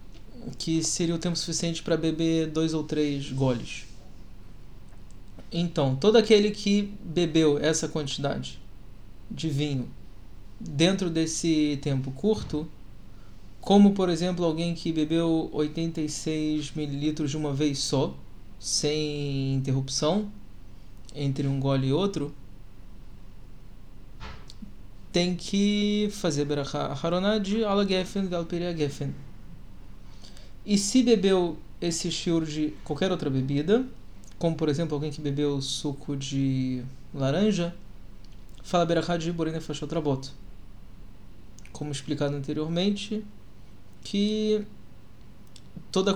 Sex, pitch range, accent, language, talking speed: male, 110-170 Hz, Brazilian, Portuguese, 100 wpm